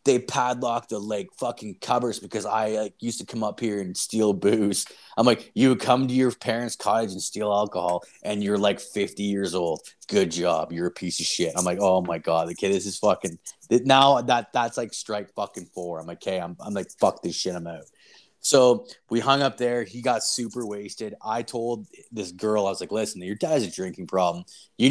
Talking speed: 225 wpm